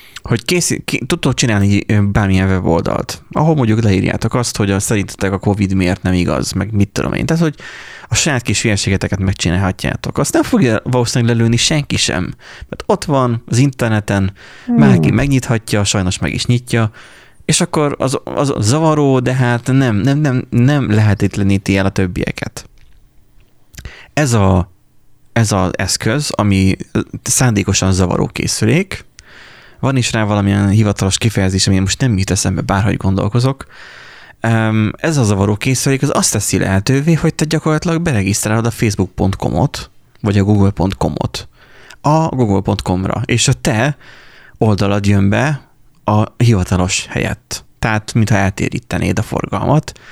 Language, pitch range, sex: Hungarian, 95-130 Hz, male